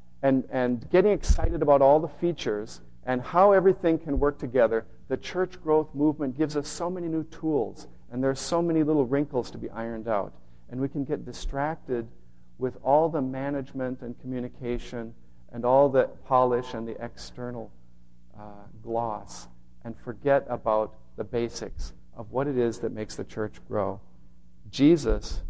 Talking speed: 165 wpm